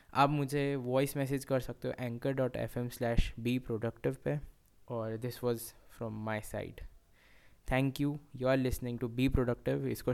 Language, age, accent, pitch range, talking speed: Hindi, 10-29, native, 115-130 Hz, 170 wpm